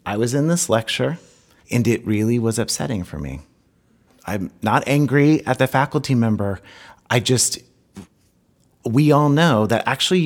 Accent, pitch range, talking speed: American, 110-145 Hz, 150 wpm